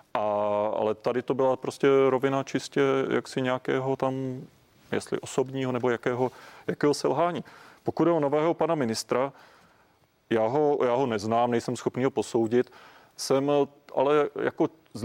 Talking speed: 145 wpm